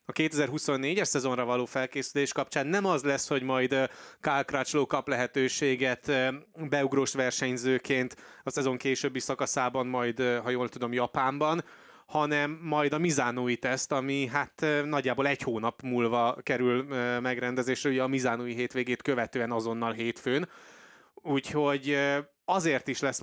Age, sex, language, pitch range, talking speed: 20-39, male, Hungarian, 125-150 Hz, 125 wpm